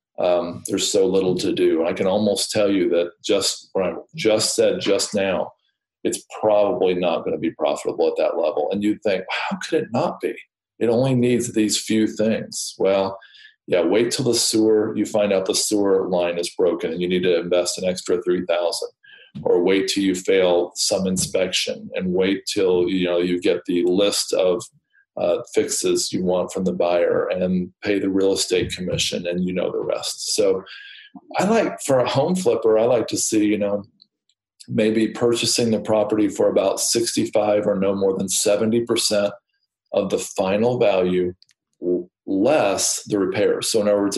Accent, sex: American, male